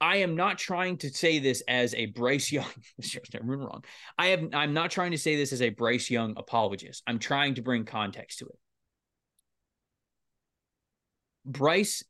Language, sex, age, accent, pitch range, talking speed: English, male, 20-39, American, 125-180 Hz, 165 wpm